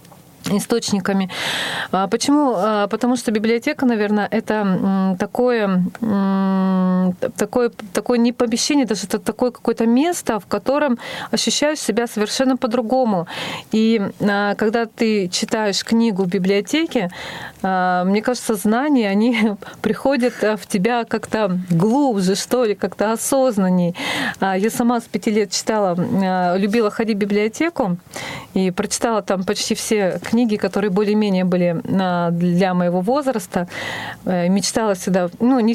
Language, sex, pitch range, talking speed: Russian, female, 190-235 Hz, 115 wpm